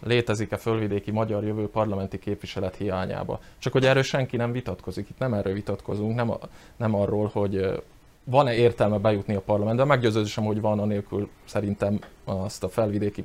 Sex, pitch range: male, 100-115 Hz